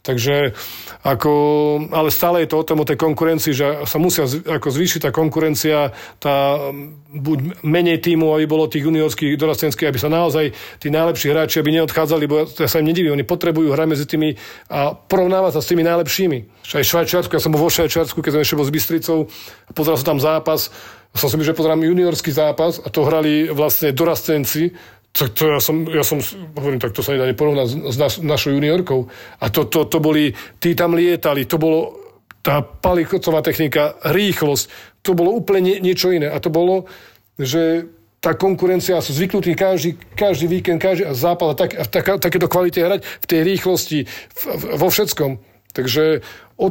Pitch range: 150-170 Hz